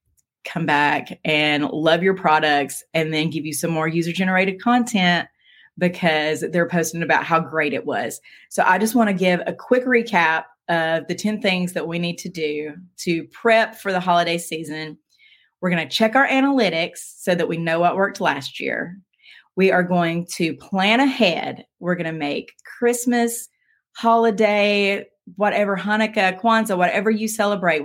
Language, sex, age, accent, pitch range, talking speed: English, female, 30-49, American, 160-200 Hz, 170 wpm